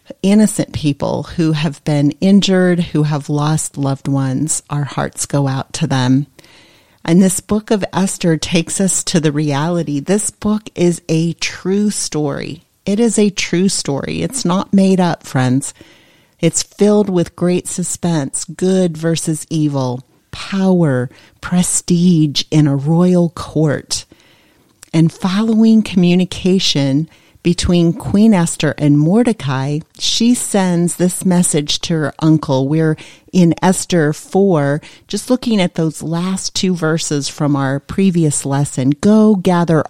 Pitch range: 150-190 Hz